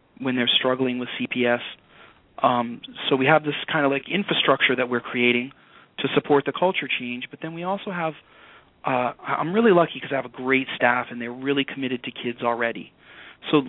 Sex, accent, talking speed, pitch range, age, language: male, American, 195 wpm, 130-150 Hz, 30-49, English